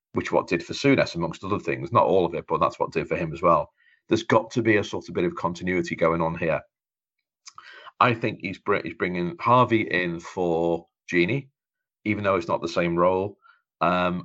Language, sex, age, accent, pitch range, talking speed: English, male, 40-59, British, 85-120 Hz, 205 wpm